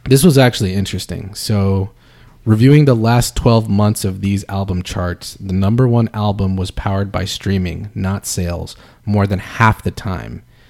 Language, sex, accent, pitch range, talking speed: English, male, American, 95-120 Hz, 165 wpm